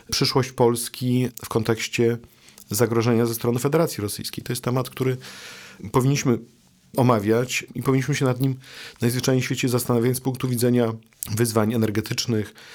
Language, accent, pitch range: Polish, native, 115-140 Hz